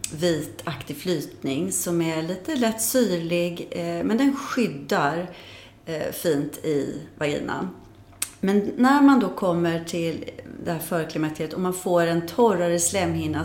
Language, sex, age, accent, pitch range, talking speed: Swedish, female, 30-49, native, 160-200 Hz, 140 wpm